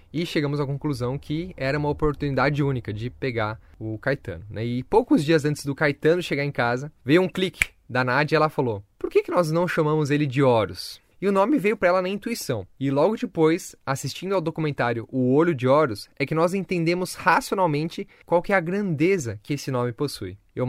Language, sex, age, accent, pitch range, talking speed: Portuguese, male, 10-29, Brazilian, 130-175 Hz, 210 wpm